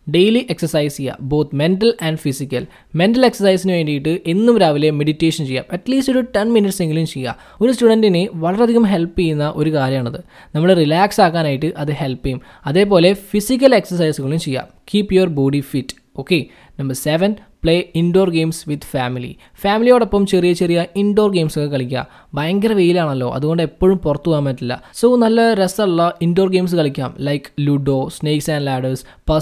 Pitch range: 145-195 Hz